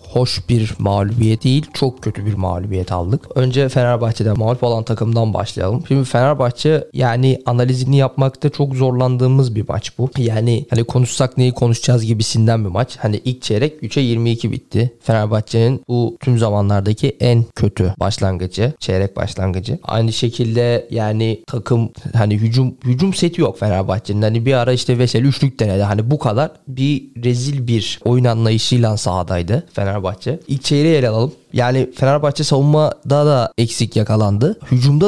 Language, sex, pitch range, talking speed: Turkish, male, 110-140 Hz, 150 wpm